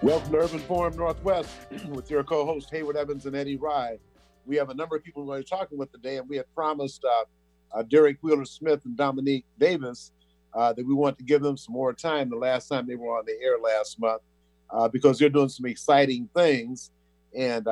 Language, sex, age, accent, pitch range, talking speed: English, male, 50-69, American, 110-140 Hz, 220 wpm